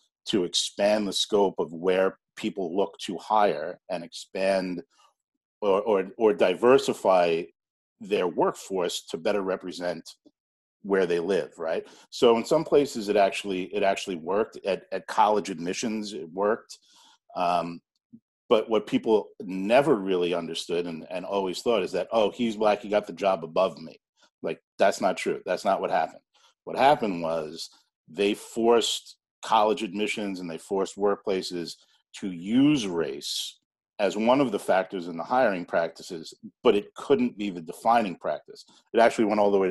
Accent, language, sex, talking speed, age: American, English, male, 160 wpm, 50-69